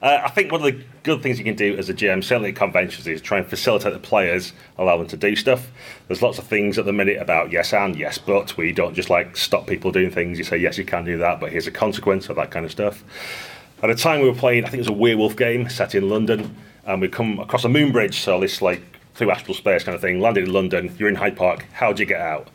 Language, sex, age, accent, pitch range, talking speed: English, male, 30-49, British, 100-130 Hz, 285 wpm